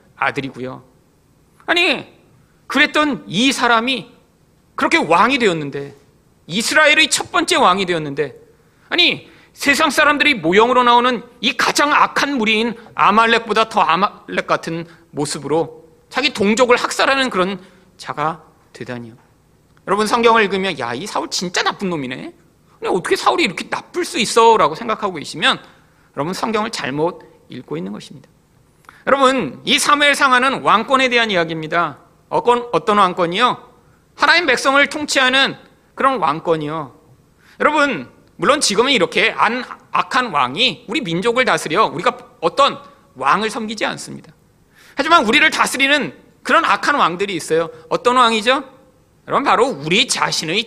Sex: male